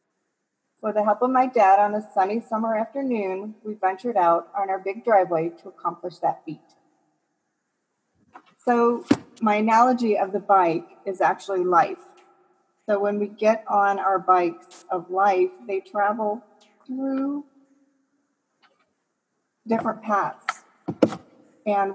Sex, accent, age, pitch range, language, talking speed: female, American, 40-59, 185-215 Hz, English, 125 wpm